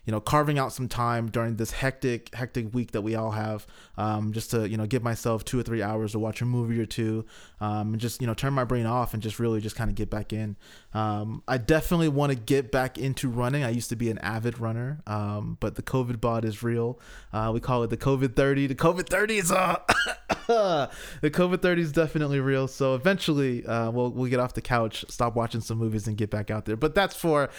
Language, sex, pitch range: English, male, 115-150 Hz